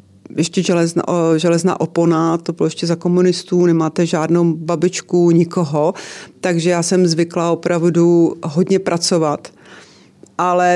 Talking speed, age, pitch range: 115 wpm, 30-49, 165-175 Hz